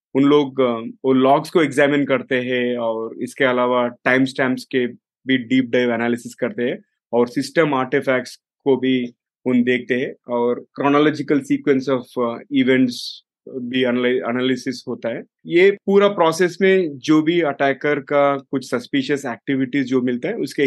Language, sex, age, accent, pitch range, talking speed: Hindi, male, 30-49, native, 125-145 Hz, 150 wpm